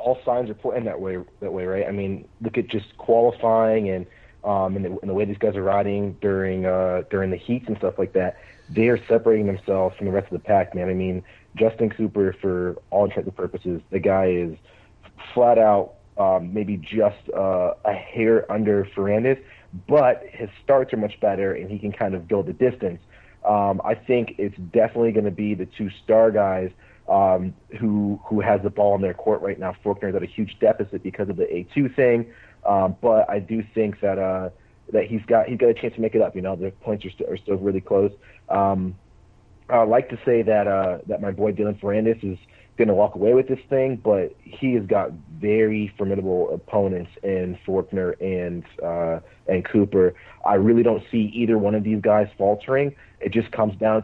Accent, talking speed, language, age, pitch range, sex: American, 210 wpm, English, 40-59, 95-110 Hz, male